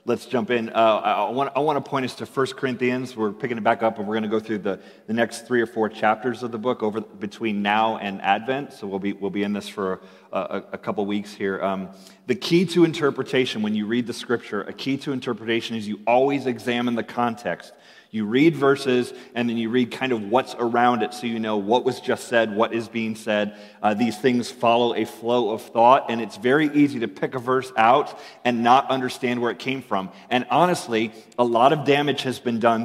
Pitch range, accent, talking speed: 110-130 Hz, American, 240 wpm